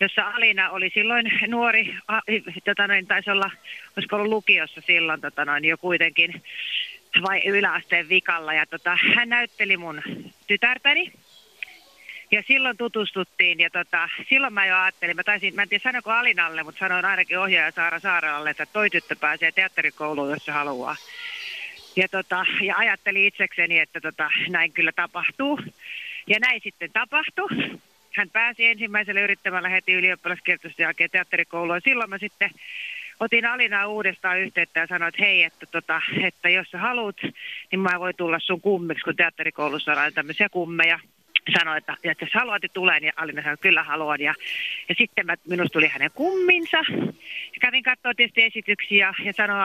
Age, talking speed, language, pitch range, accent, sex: 30-49, 165 wpm, Finnish, 170-225 Hz, native, female